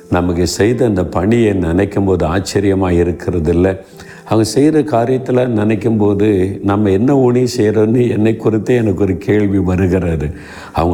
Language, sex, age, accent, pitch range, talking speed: Tamil, male, 50-69, native, 90-105 Hz, 120 wpm